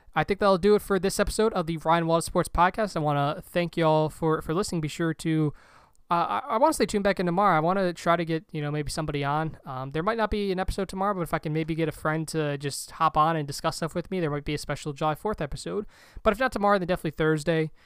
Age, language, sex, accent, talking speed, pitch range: 20-39, English, male, American, 290 wpm, 150-180 Hz